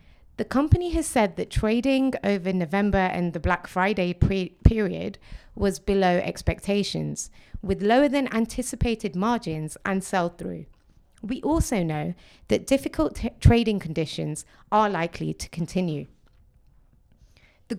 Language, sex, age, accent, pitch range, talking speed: English, female, 30-49, British, 175-235 Hz, 120 wpm